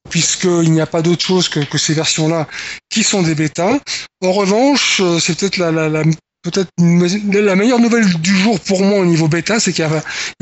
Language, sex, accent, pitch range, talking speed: French, male, French, 160-200 Hz, 215 wpm